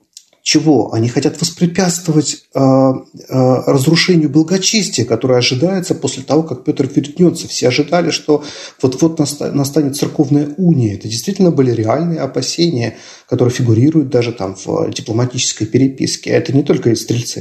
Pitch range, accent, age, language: 120-155 Hz, native, 40-59, Russian